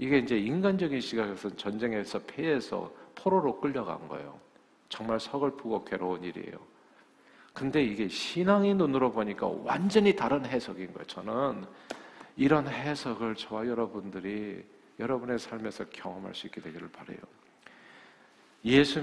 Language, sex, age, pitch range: Korean, male, 50-69, 100-140 Hz